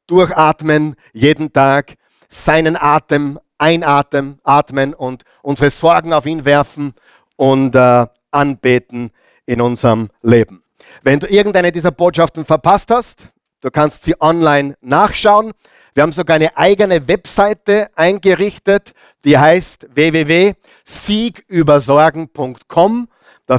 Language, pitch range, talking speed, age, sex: German, 130-170 Hz, 105 wpm, 50-69, male